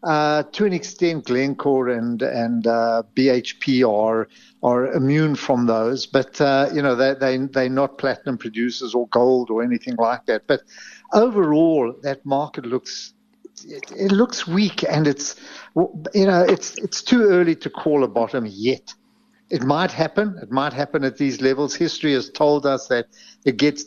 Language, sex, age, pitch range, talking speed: English, male, 60-79, 120-150 Hz, 170 wpm